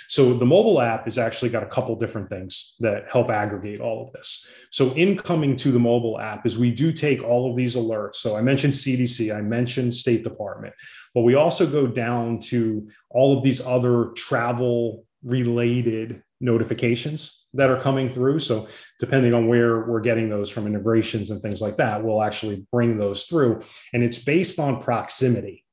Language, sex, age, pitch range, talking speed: English, male, 30-49, 115-135 Hz, 185 wpm